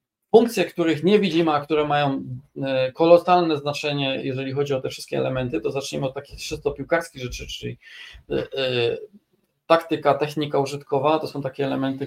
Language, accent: Polish, native